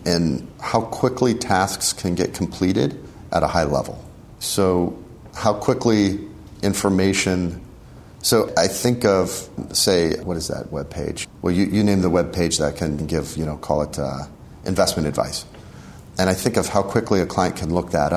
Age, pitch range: 40-59, 80-95 Hz